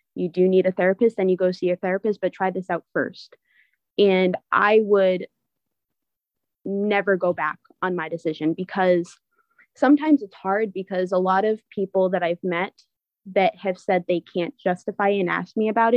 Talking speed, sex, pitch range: 175 wpm, female, 180-200 Hz